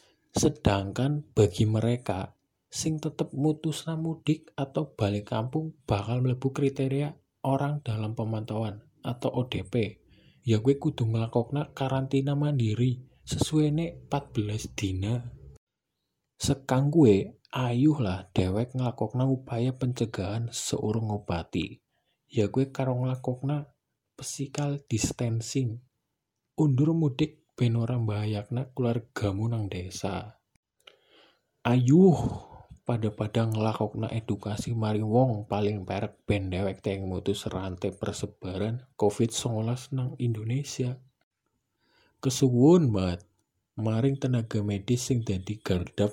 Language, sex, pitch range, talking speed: Indonesian, male, 105-135 Hz, 95 wpm